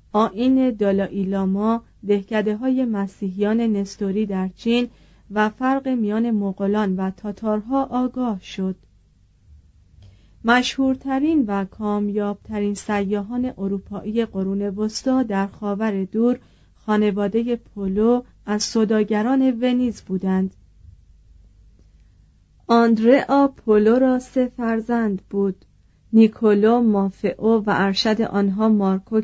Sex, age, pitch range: female, 40-59, 195-240 Hz